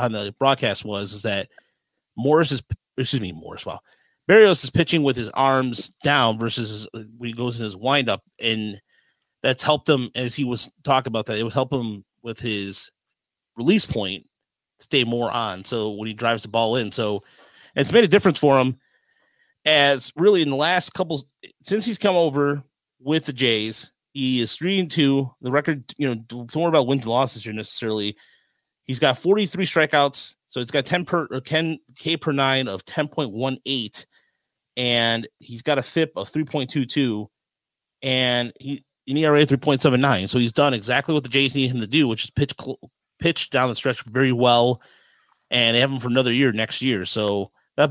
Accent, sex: American, male